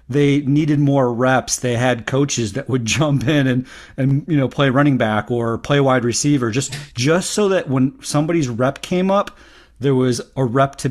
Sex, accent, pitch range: male, American, 120-155 Hz